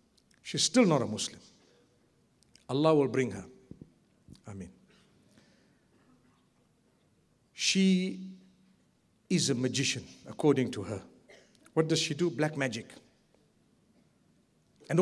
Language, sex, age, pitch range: English, male, 50-69, 140-190 Hz